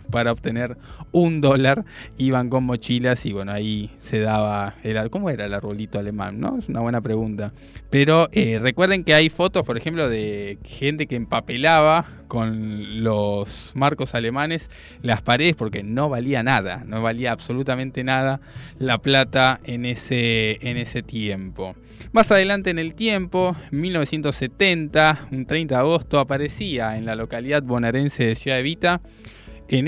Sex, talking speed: male, 155 wpm